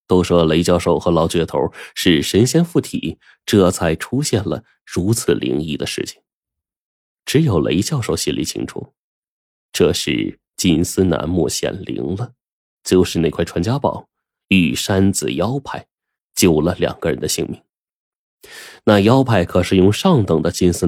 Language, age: Chinese, 20-39